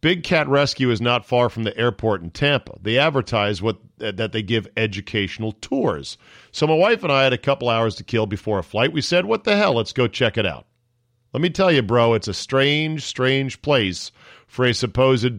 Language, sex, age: English, male, 40-59